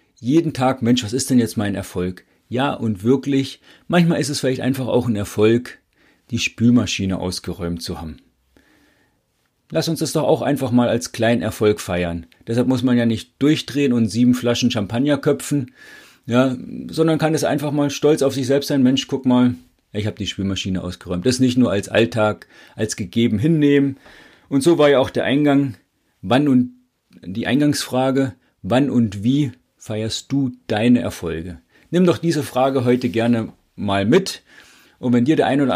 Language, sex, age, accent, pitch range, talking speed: German, male, 40-59, German, 105-135 Hz, 180 wpm